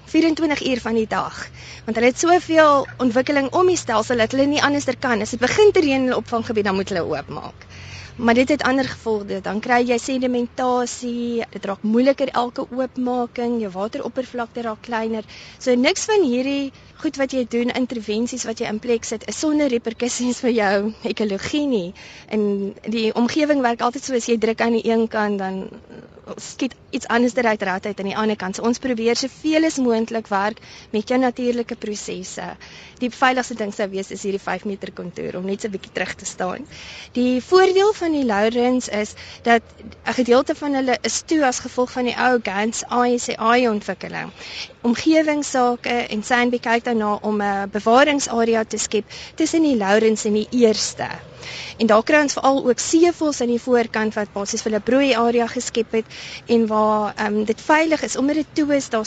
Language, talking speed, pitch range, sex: Dutch, 195 wpm, 215-255 Hz, female